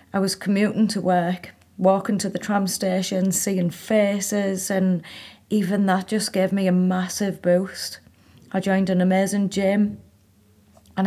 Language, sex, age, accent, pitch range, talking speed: English, female, 30-49, British, 165-190 Hz, 145 wpm